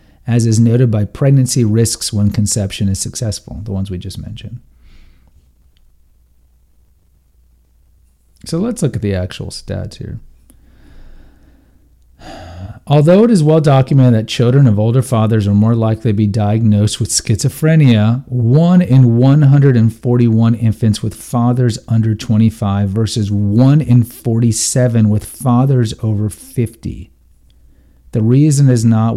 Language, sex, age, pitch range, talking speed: English, male, 40-59, 100-125 Hz, 125 wpm